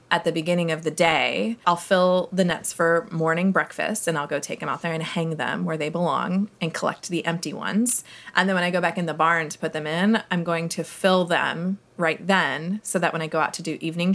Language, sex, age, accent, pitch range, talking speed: English, female, 20-39, American, 155-190 Hz, 255 wpm